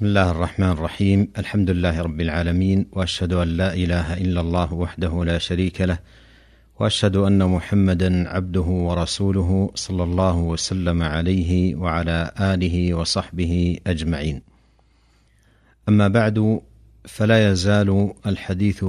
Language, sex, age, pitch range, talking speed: Arabic, male, 50-69, 90-105 Hz, 115 wpm